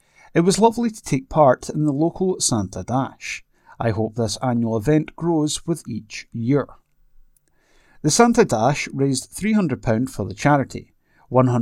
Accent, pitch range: British, 115-155 Hz